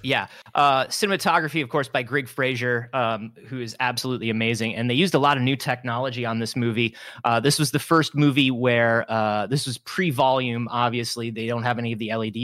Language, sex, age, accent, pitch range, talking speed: English, male, 30-49, American, 115-145 Hz, 205 wpm